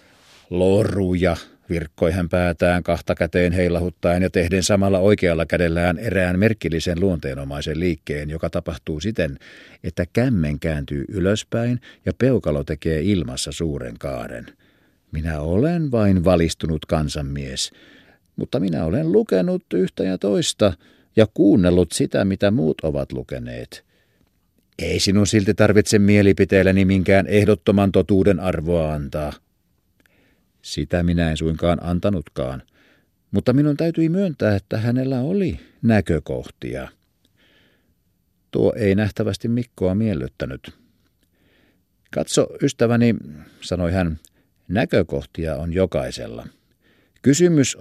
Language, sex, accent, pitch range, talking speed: Finnish, male, native, 85-105 Hz, 105 wpm